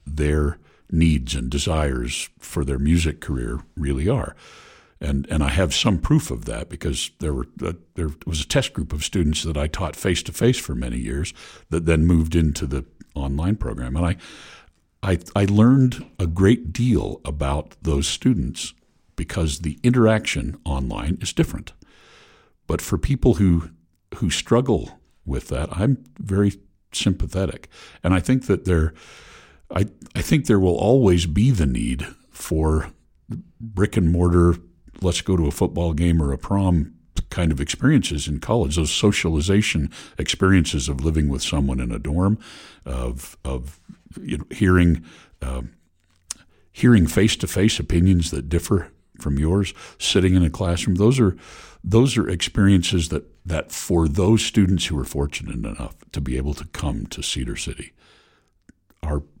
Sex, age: male, 60-79